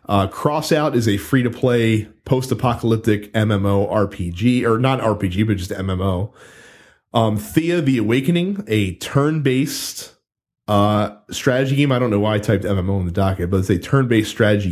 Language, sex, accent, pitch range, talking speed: English, male, American, 100-125 Hz, 150 wpm